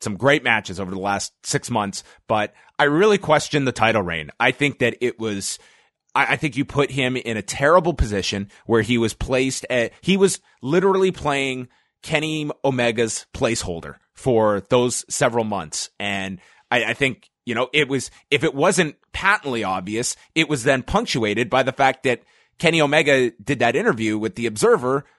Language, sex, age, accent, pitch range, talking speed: English, male, 30-49, American, 110-140 Hz, 180 wpm